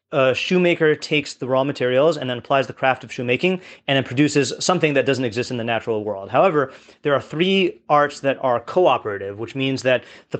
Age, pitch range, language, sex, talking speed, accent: 30-49, 125-150 Hz, English, male, 210 wpm, American